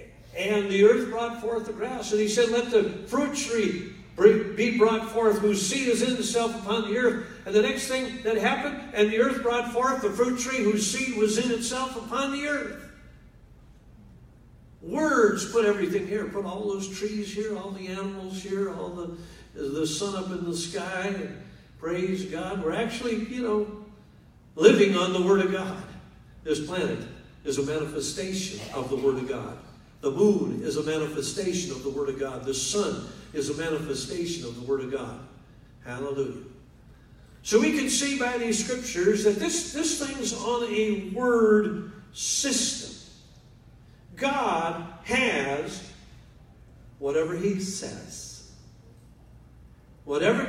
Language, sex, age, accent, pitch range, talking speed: English, male, 60-79, American, 165-230 Hz, 155 wpm